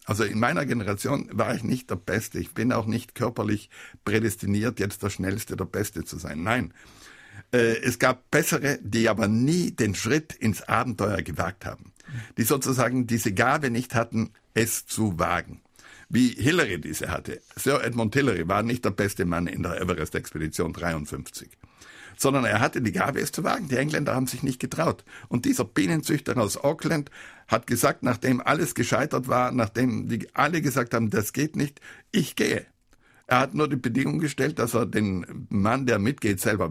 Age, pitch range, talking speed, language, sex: 60-79, 105-135 Hz, 175 wpm, German, male